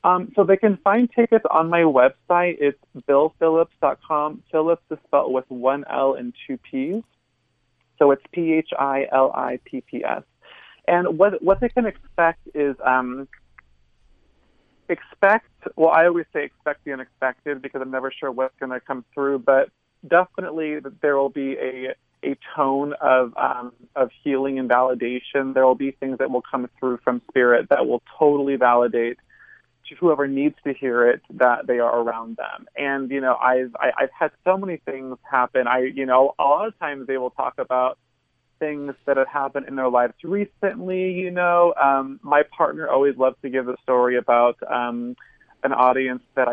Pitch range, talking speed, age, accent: 125-150 Hz, 170 wpm, 30-49, American